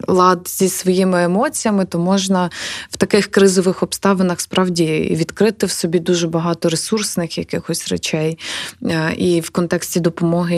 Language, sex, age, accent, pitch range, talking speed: Ukrainian, female, 20-39, native, 170-195 Hz, 130 wpm